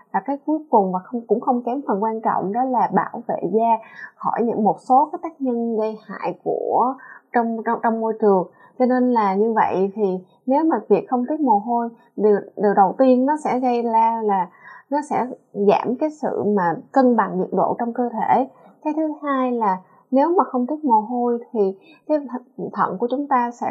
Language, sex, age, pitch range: Vietnamese, female, 20-39, 205-265 Hz